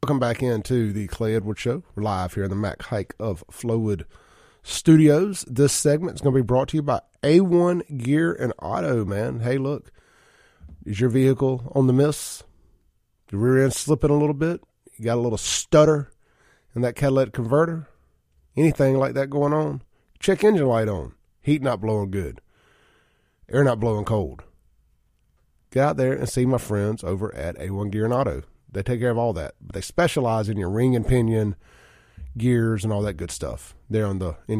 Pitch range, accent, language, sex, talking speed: 100-135 Hz, American, English, male, 190 wpm